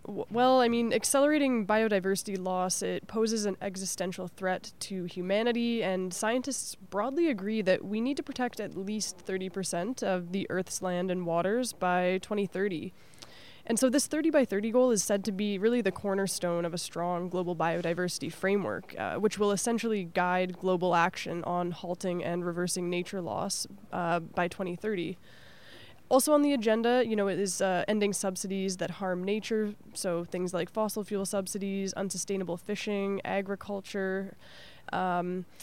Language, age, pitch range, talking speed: English, 20-39, 180-220 Hz, 155 wpm